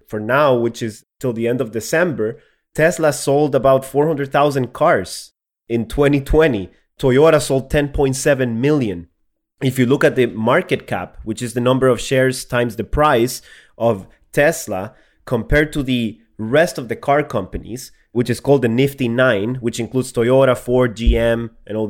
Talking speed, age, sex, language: 160 wpm, 30-49, male, English